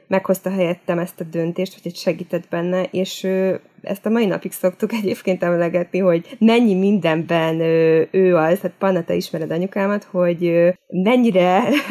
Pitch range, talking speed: 165-200 Hz, 160 wpm